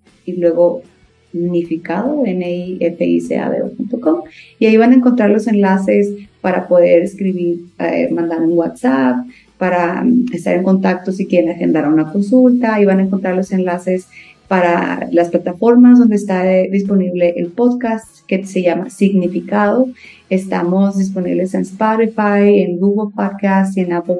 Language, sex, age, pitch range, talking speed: Spanish, female, 30-49, 180-225 Hz, 150 wpm